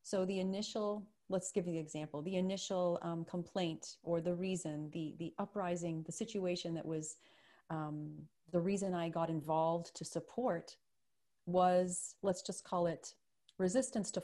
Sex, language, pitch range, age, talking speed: female, English, 165-195 Hz, 30-49, 155 wpm